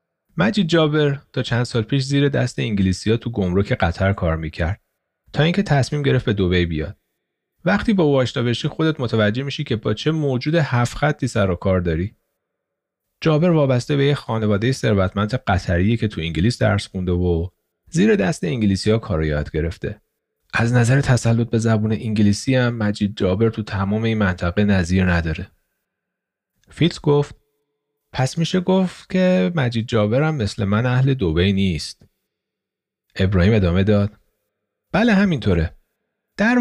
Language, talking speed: Persian, 155 wpm